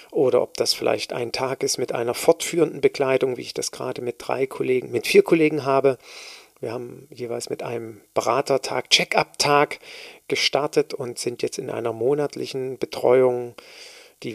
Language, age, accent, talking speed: German, 40-59, German, 165 wpm